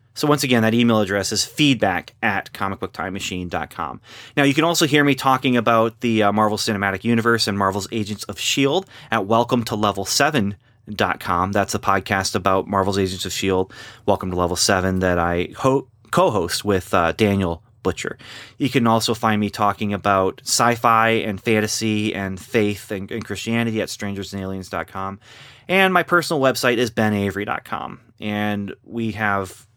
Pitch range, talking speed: 100-130 Hz, 150 wpm